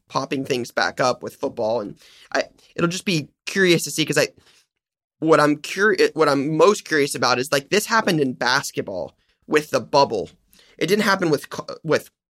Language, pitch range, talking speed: English, 140-170 Hz, 185 wpm